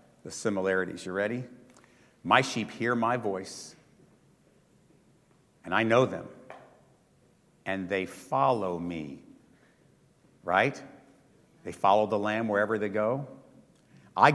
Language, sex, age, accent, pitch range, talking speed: English, male, 50-69, American, 105-175 Hz, 110 wpm